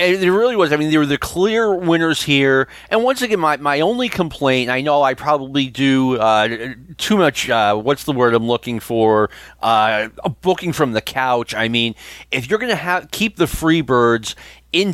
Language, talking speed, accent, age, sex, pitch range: English, 195 wpm, American, 40-59, male, 120-160 Hz